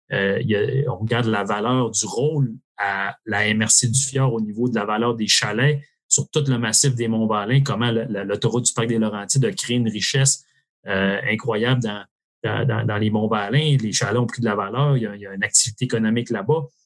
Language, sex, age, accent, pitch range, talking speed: French, male, 30-49, Canadian, 110-140 Hz, 230 wpm